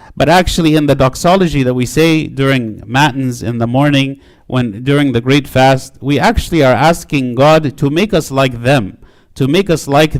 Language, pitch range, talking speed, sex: English, 125-150 Hz, 190 wpm, male